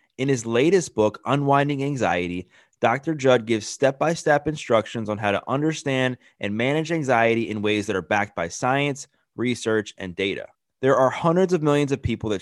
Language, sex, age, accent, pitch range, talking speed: English, male, 20-39, American, 105-145 Hz, 175 wpm